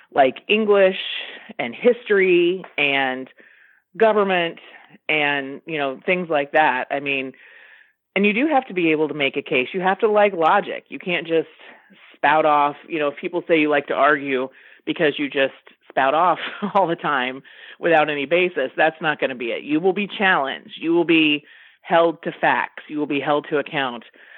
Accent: American